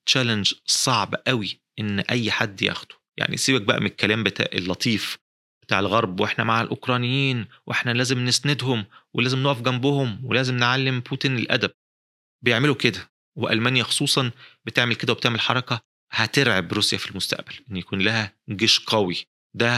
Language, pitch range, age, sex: Arabic, 100-125 Hz, 30-49, male